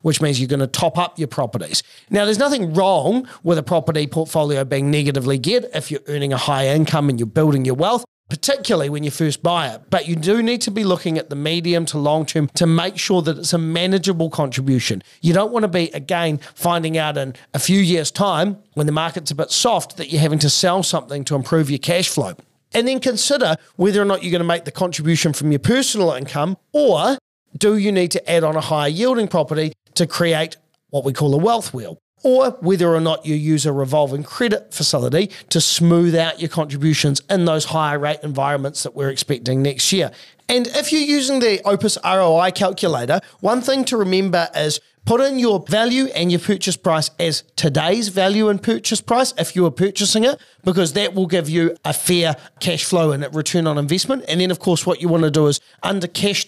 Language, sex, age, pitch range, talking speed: English, male, 40-59, 150-195 Hz, 220 wpm